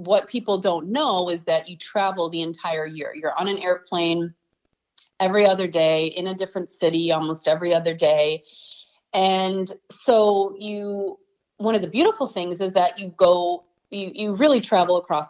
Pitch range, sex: 170-235 Hz, female